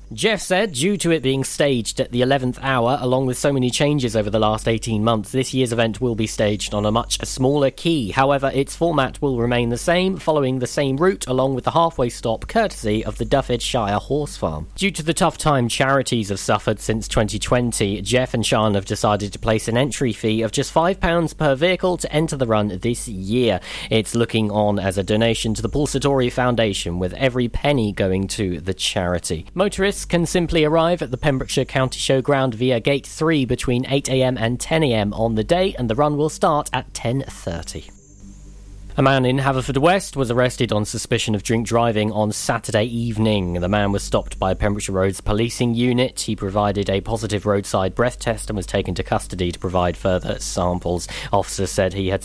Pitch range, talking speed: 105-135 Hz, 200 wpm